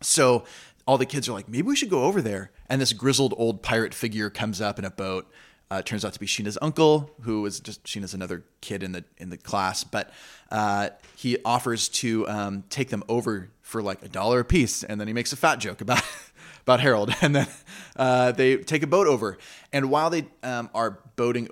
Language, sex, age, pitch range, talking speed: English, male, 20-39, 100-125 Hz, 225 wpm